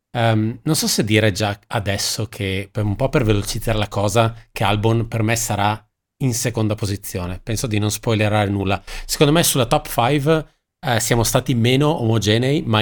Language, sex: Italian, male